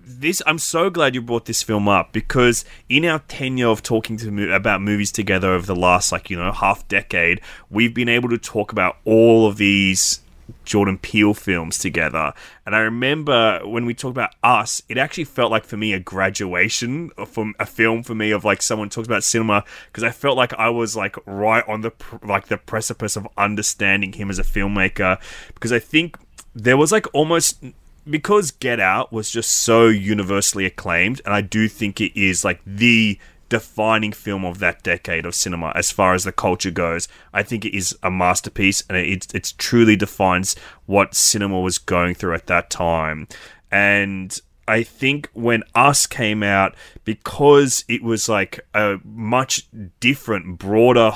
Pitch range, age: 95-115 Hz, 20-39